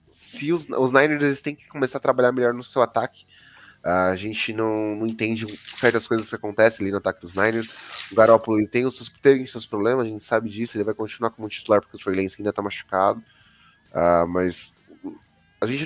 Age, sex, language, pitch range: 20-39, male, English, 110-130 Hz